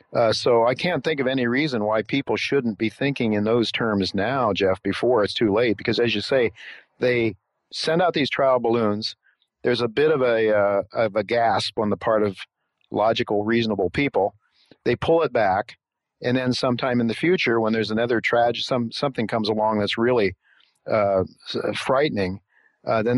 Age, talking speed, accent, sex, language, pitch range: 50-69, 190 wpm, American, male, English, 105-125 Hz